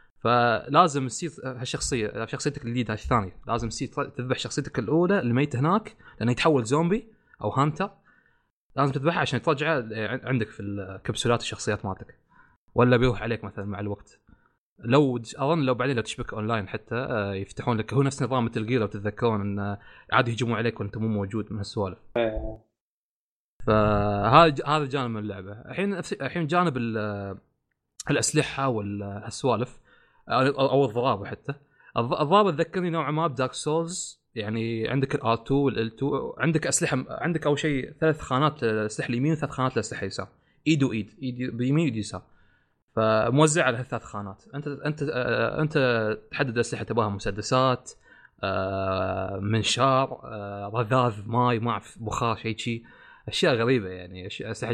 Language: Arabic